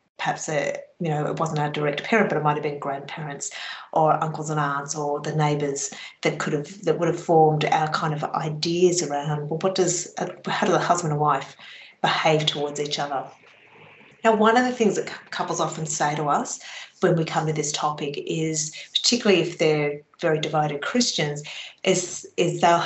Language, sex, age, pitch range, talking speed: English, female, 30-49, 150-180 Hz, 195 wpm